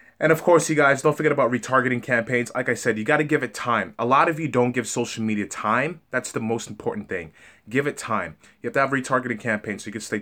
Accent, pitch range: American, 110-145 Hz